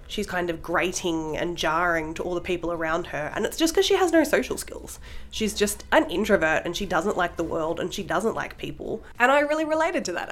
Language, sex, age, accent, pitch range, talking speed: English, female, 20-39, Australian, 165-195 Hz, 245 wpm